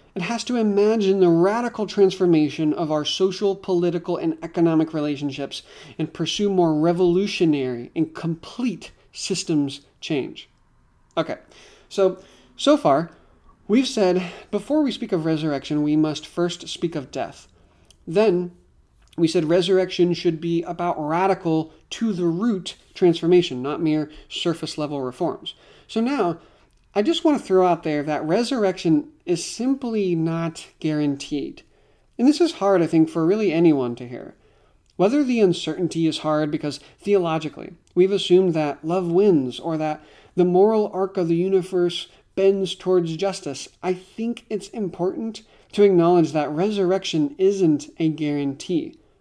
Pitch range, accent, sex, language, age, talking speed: 155-195 Hz, American, male, English, 40-59, 140 wpm